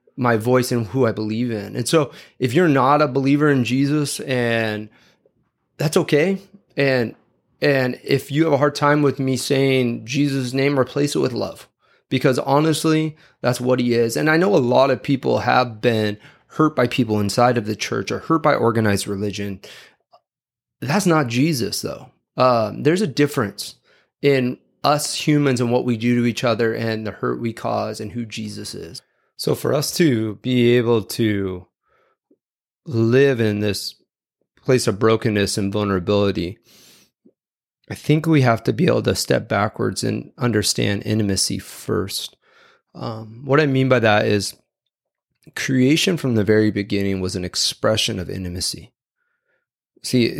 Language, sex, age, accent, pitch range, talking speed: English, male, 30-49, American, 110-140 Hz, 165 wpm